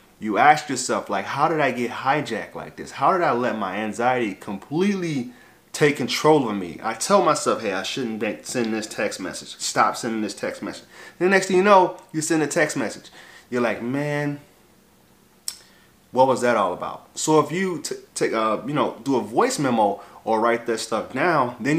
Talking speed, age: 205 wpm, 30-49